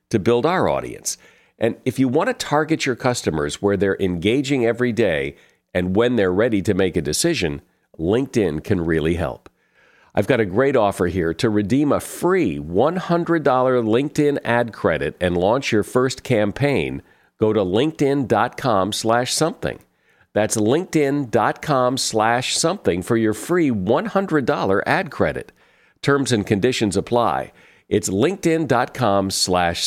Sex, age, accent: male, 50-69, American